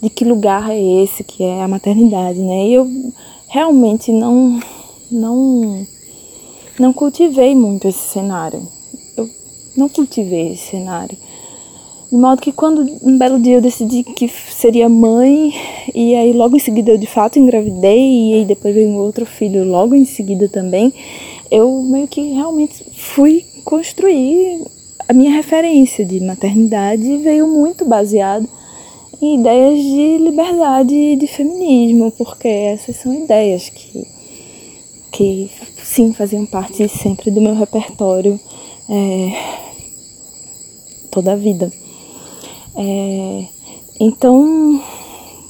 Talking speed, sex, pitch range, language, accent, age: 125 wpm, female, 205-265 Hz, Portuguese, Brazilian, 20-39